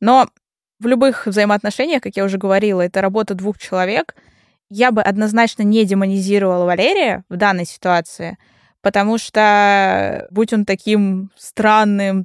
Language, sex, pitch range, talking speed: Russian, female, 190-225 Hz, 130 wpm